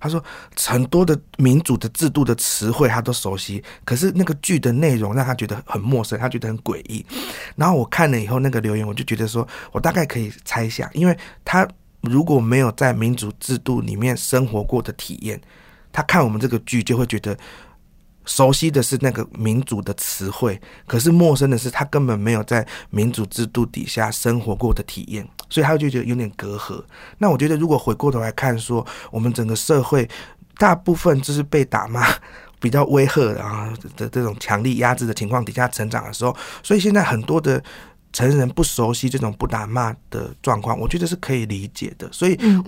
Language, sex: Chinese, male